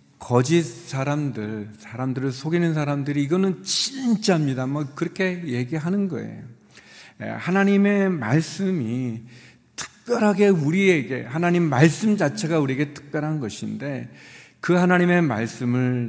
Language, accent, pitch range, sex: Korean, native, 115-170 Hz, male